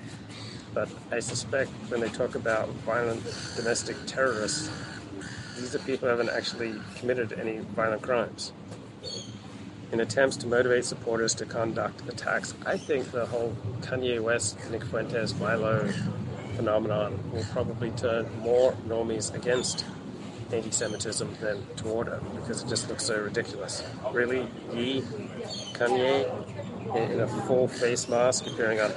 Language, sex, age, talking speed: English, male, 30-49, 130 wpm